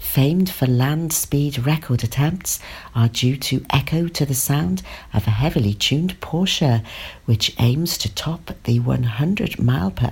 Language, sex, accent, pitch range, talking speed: English, female, British, 120-180 Hz, 155 wpm